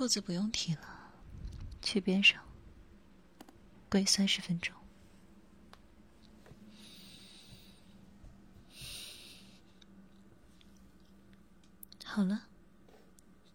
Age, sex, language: 30-49, female, Chinese